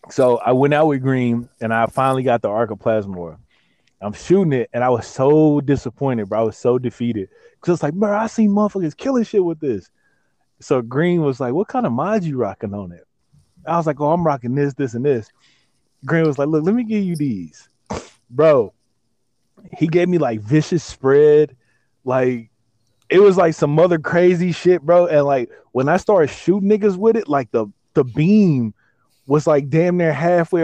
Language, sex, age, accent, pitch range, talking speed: English, male, 20-39, American, 120-170 Hz, 200 wpm